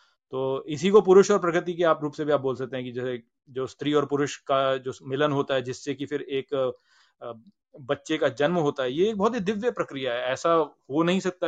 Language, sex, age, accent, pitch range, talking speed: Hindi, male, 30-49, native, 140-180 Hz, 235 wpm